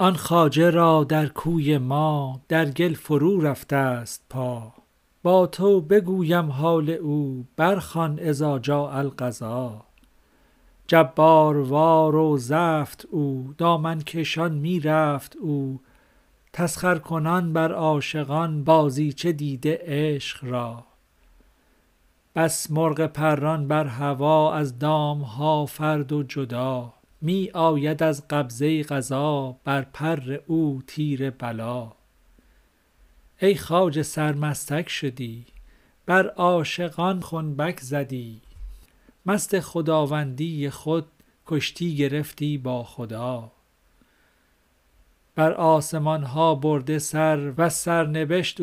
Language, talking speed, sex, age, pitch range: Persian, 100 wpm, male, 50-69, 135-165 Hz